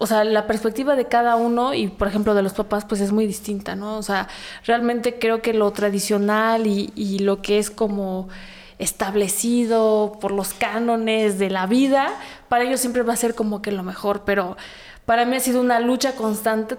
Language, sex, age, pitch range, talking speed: Spanish, female, 20-39, 210-250 Hz, 200 wpm